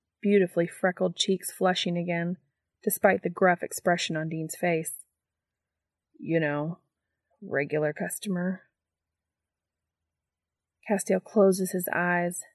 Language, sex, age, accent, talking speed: English, female, 30-49, American, 95 wpm